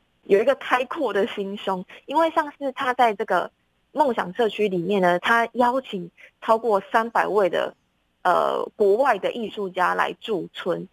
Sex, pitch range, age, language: female, 185-230 Hz, 20-39, Chinese